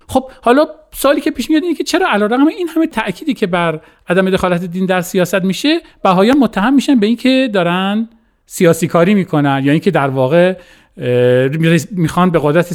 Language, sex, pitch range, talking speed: Persian, male, 140-200 Hz, 175 wpm